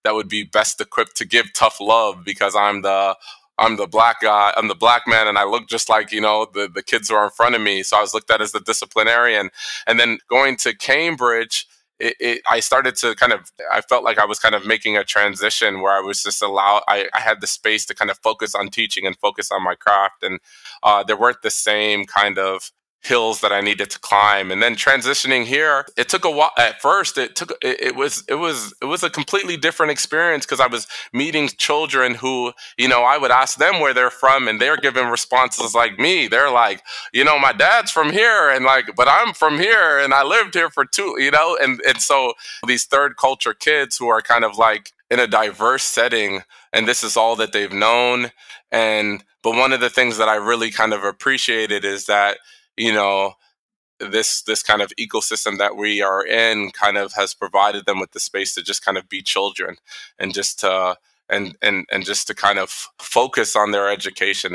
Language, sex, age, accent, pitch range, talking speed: English, male, 20-39, American, 100-120 Hz, 225 wpm